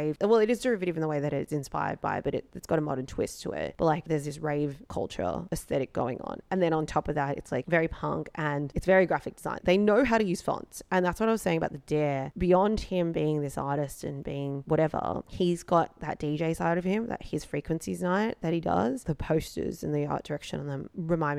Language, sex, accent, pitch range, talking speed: English, female, Australian, 145-175 Hz, 250 wpm